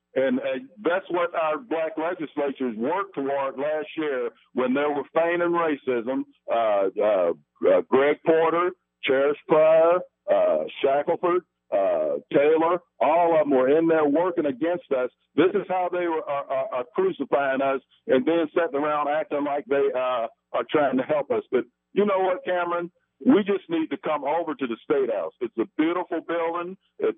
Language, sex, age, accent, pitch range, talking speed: English, male, 50-69, American, 145-180 Hz, 170 wpm